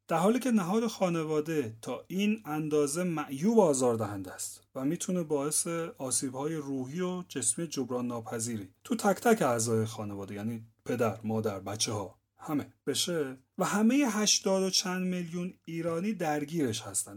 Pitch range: 115-180 Hz